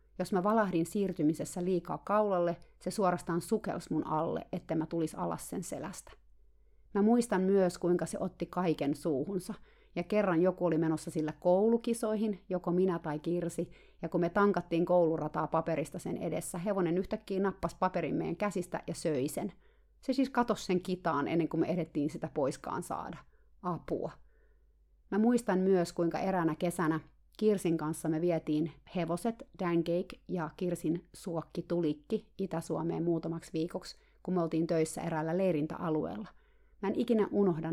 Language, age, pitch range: Finnish, 30-49, 160-190 Hz